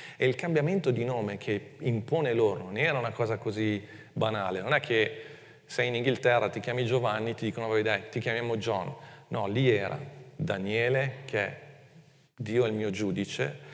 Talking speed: 175 wpm